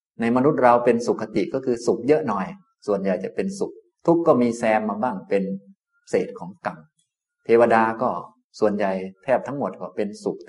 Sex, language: male, Thai